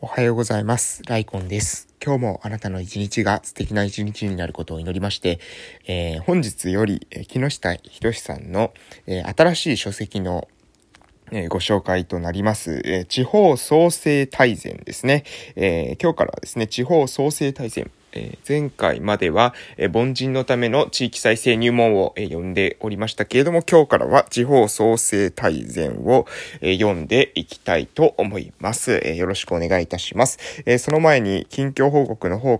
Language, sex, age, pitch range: Japanese, male, 20-39, 95-130 Hz